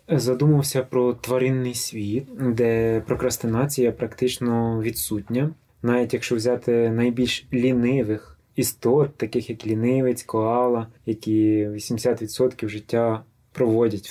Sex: male